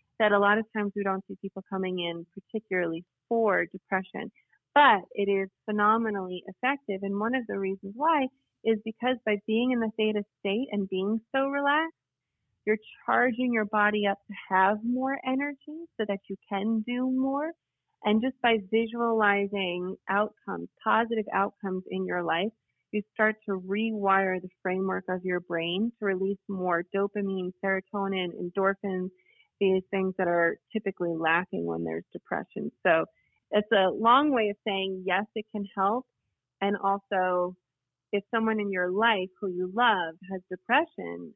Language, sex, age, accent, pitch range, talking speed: English, female, 30-49, American, 185-225 Hz, 160 wpm